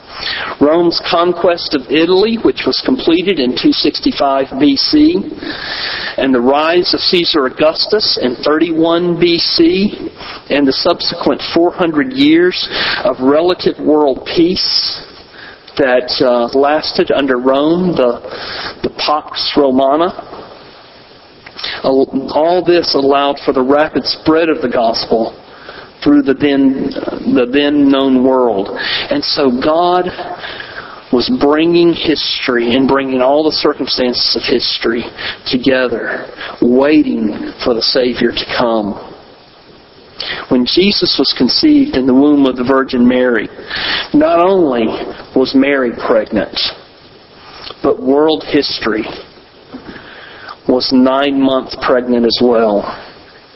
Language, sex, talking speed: English, male, 110 wpm